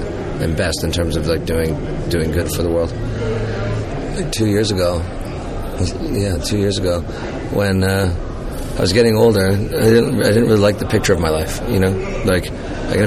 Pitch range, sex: 85-110 Hz, male